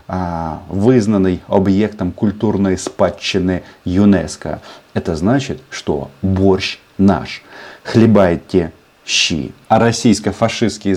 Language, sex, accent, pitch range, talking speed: Russian, male, native, 85-105 Hz, 75 wpm